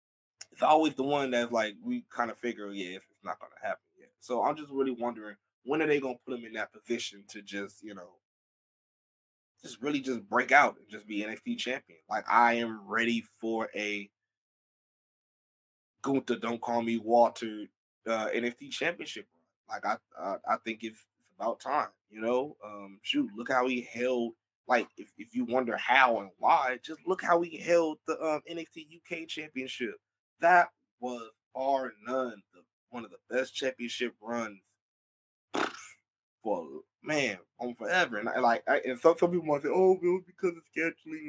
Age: 20-39